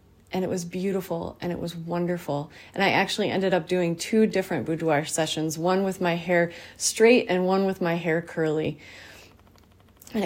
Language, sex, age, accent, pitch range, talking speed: English, female, 30-49, American, 155-185 Hz, 175 wpm